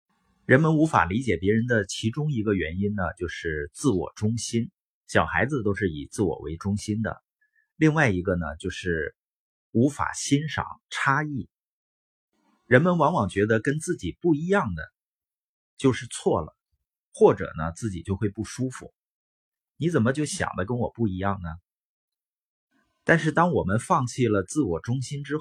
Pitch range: 100-140 Hz